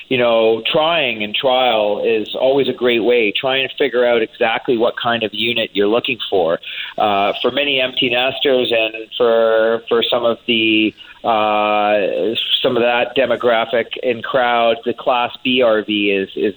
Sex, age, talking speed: male, 40-59, 165 wpm